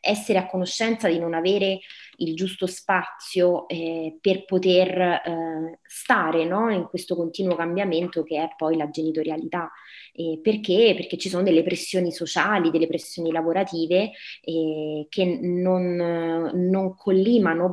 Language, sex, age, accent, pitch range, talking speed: Italian, female, 20-39, native, 170-195 Hz, 130 wpm